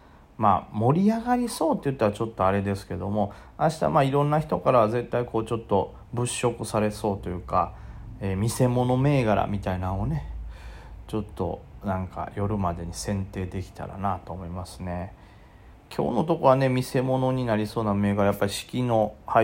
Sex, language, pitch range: male, Japanese, 95-120 Hz